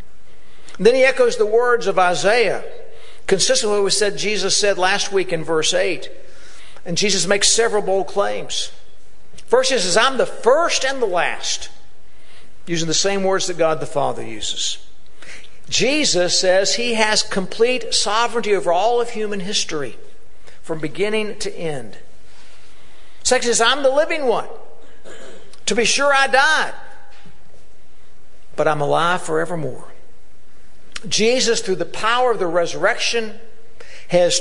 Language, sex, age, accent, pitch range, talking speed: English, male, 60-79, American, 180-245 Hz, 145 wpm